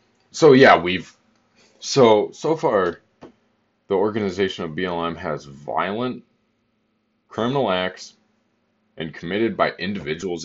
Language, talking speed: English, 105 wpm